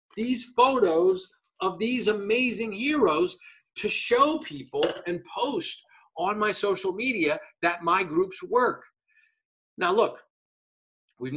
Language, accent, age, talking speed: English, American, 40-59, 115 wpm